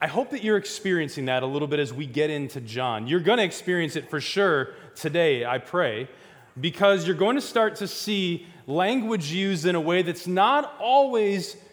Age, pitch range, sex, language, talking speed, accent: 20-39, 140-200 Hz, male, English, 200 wpm, American